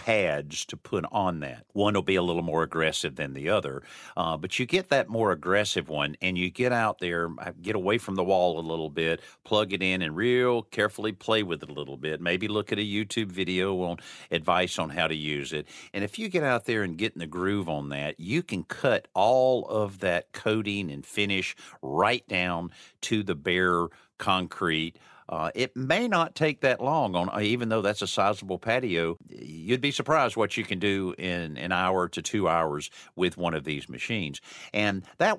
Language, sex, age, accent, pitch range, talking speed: English, male, 50-69, American, 85-110 Hz, 210 wpm